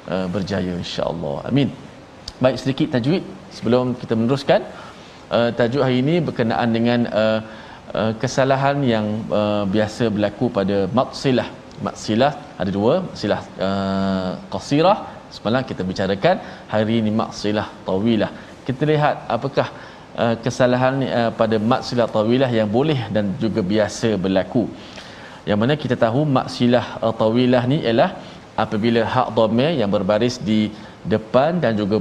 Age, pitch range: 20-39, 105-130 Hz